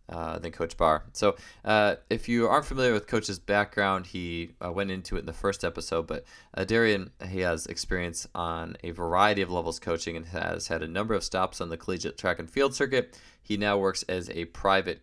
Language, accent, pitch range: English, American, 85-100 Hz